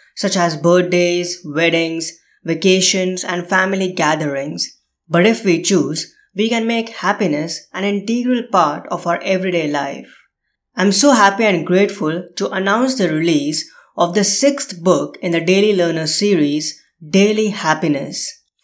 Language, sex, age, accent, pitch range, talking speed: English, female, 20-39, Indian, 165-205 Hz, 140 wpm